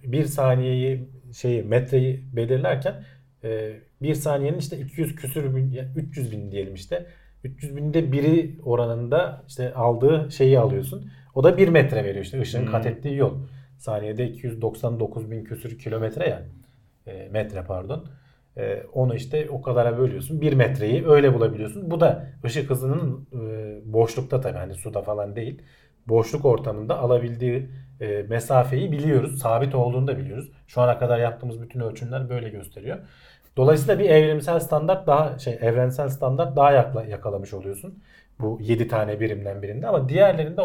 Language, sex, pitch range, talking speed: Turkish, male, 115-145 Hz, 150 wpm